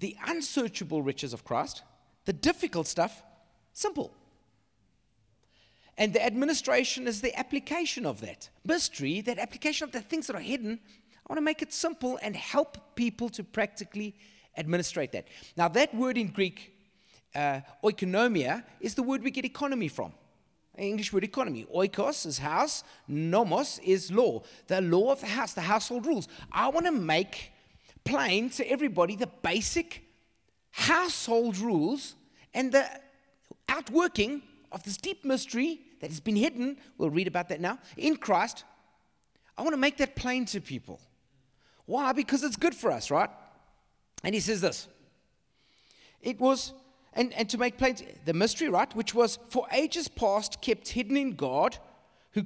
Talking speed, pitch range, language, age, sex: 160 wpm, 190-275 Hz, English, 30-49, male